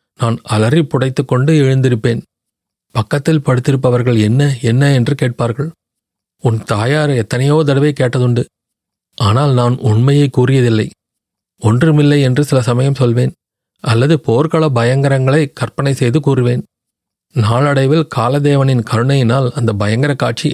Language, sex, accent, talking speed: Tamil, male, native, 110 wpm